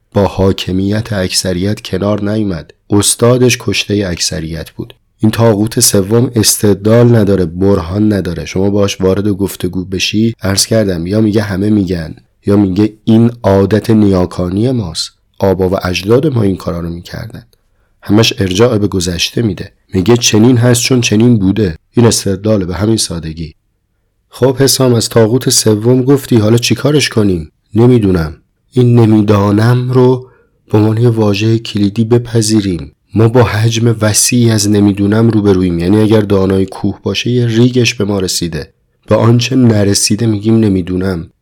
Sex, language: male, Persian